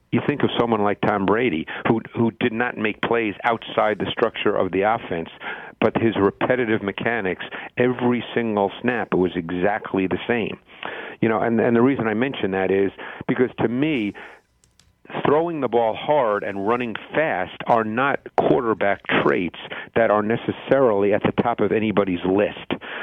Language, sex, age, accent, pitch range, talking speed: English, male, 50-69, American, 95-115 Hz, 165 wpm